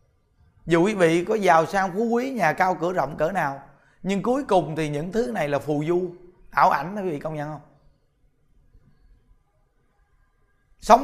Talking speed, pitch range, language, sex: 175 wpm, 155-205 Hz, Vietnamese, male